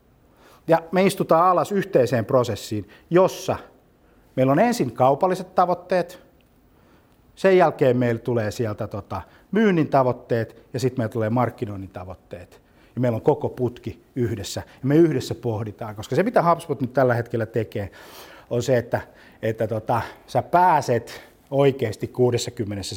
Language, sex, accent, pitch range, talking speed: Finnish, male, native, 110-140 Hz, 130 wpm